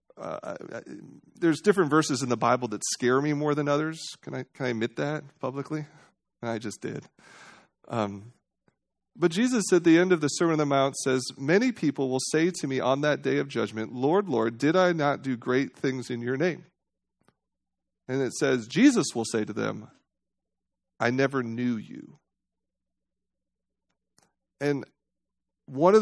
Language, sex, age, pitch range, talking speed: English, male, 40-59, 125-180 Hz, 165 wpm